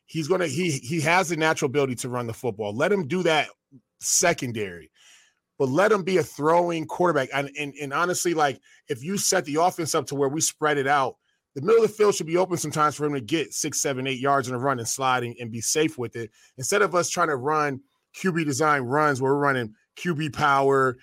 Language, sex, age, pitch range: English, male, 20-39, 130-160 Hz